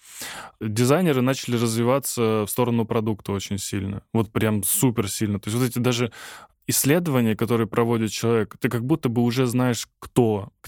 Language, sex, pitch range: Russian, male, 105-125 Hz